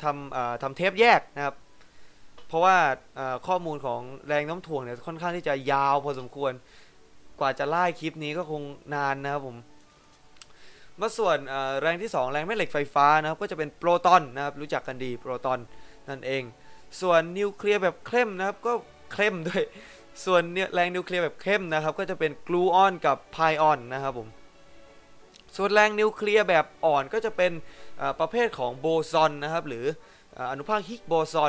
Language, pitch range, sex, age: Thai, 135-180 Hz, male, 20-39